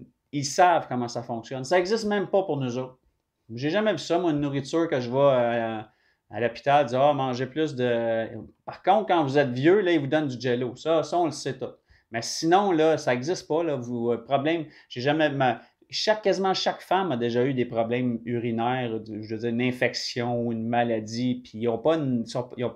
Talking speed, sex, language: 220 wpm, male, French